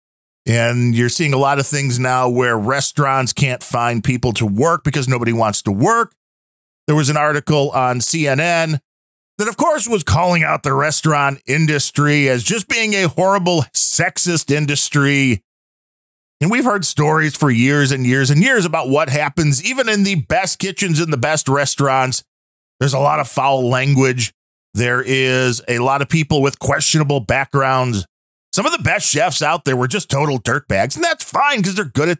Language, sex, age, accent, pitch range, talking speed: English, male, 40-59, American, 125-165 Hz, 180 wpm